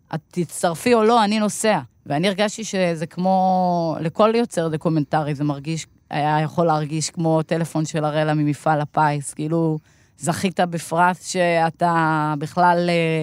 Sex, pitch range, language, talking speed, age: female, 150-185 Hz, Hebrew, 130 wpm, 20-39